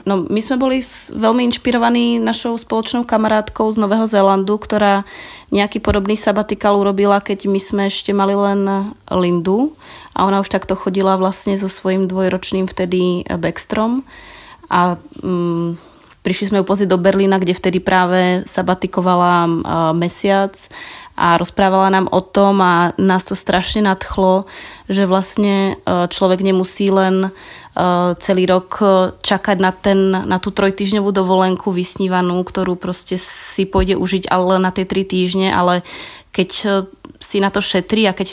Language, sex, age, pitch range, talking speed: Czech, female, 20-39, 185-200 Hz, 145 wpm